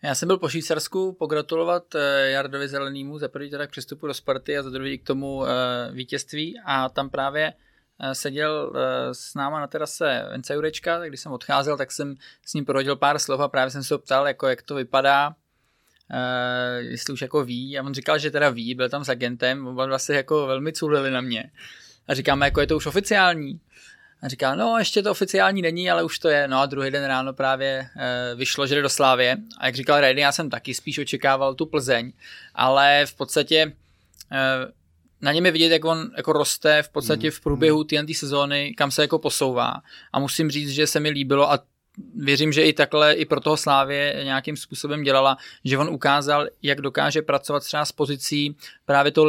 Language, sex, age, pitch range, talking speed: Czech, male, 20-39, 135-150 Hz, 205 wpm